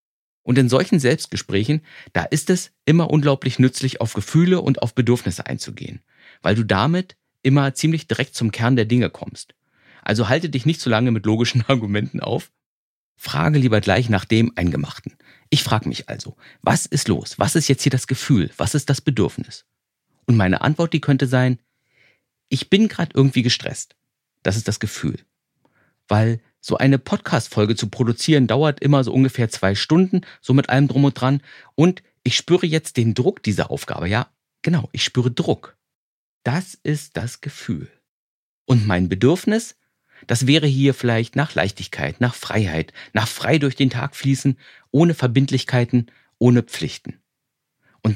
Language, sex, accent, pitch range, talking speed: German, male, German, 115-150 Hz, 165 wpm